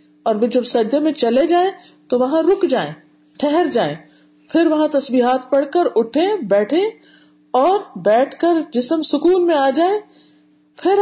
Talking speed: 150 wpm